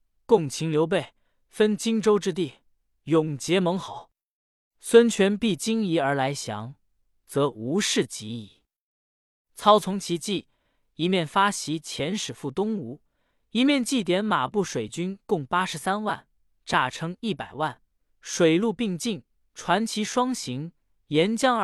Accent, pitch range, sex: native, 145-215 Hz, male